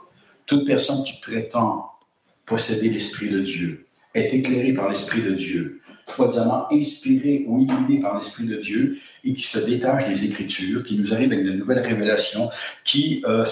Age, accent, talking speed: 60-79, French, 165 wpm